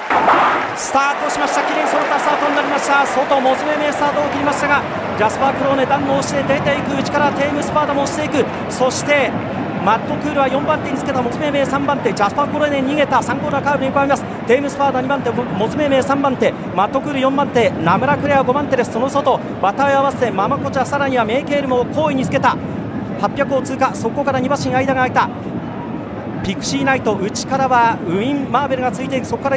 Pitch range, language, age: 250-285 Hz, Japanese, 40-59